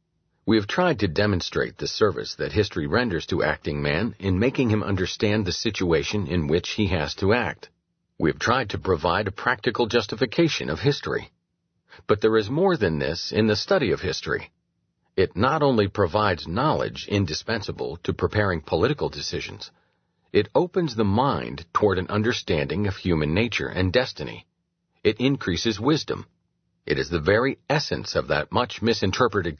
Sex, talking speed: male, 160 wpm